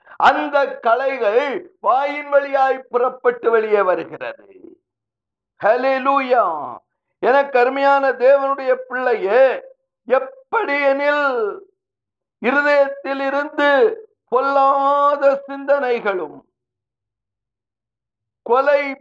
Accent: native